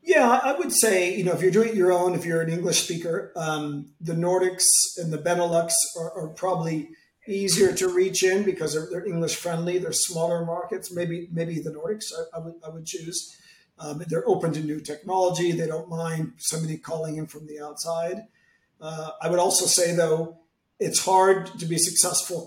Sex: male